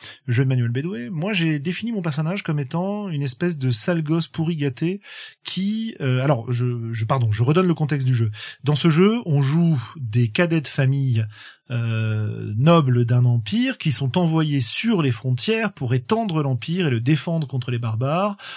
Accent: French